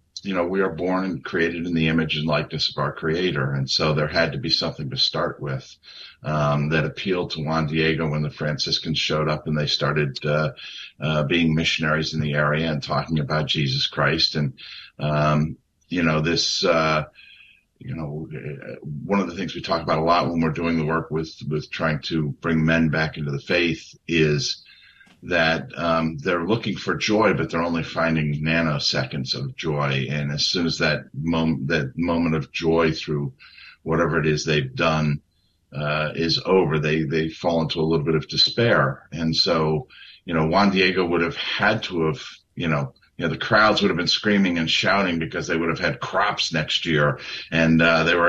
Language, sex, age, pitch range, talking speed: English, male, 50-69, 75-85 Hz, 200 wpm